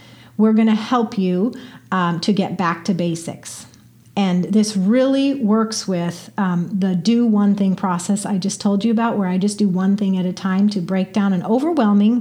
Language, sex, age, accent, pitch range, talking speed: English, female, 40-59, American, 190-230 Hz, 200 wpm